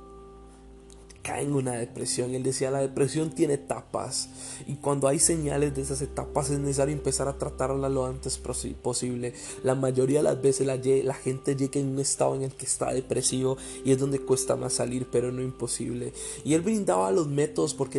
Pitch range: 125-140 Hz